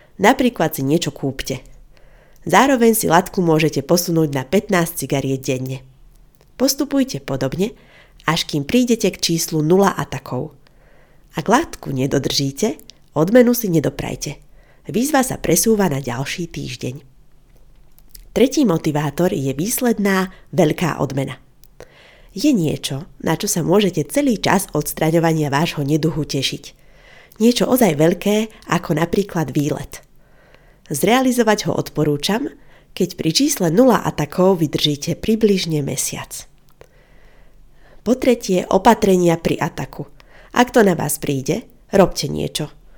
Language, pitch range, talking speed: Slovak, 145-200 Hz, 115 wpm